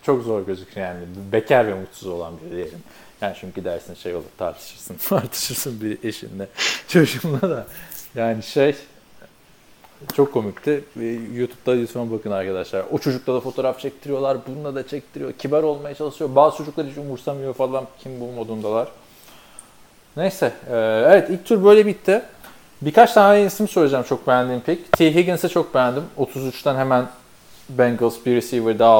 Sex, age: male, 40-59